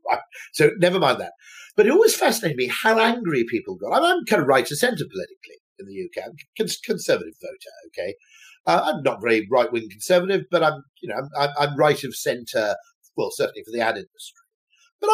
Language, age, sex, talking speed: English, 50-69, male, 210 wpm